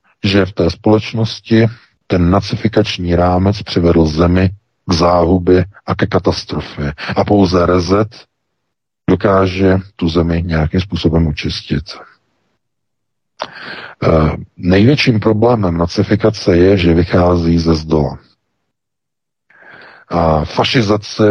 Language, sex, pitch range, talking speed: Czech, male, 80-100 Hz, 95 wpm